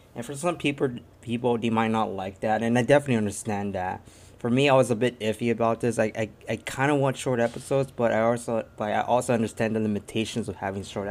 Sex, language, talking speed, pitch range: male, English, 240 wpm, 105-120 Hz